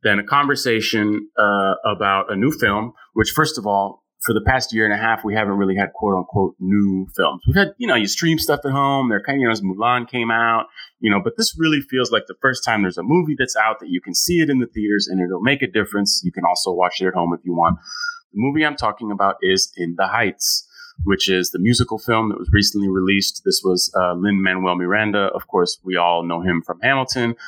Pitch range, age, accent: 95-130 Hz, 30-49, American